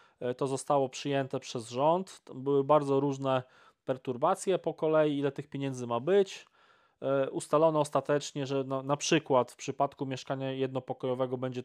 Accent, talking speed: native, 140 wpm